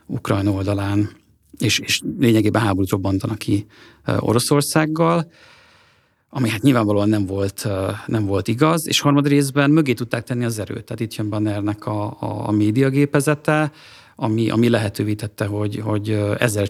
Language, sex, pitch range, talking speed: Hungarian, male, 105-125 Hz, 145 wpm